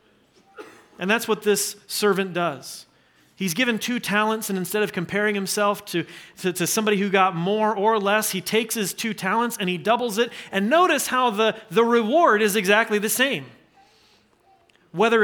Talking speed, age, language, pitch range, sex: 175 wpm, 30-49, English, 185-235 Hz, male